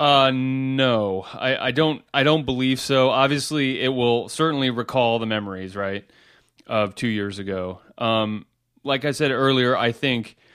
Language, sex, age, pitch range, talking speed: English, male, 30-49, 110-135 Hz, 160 wpm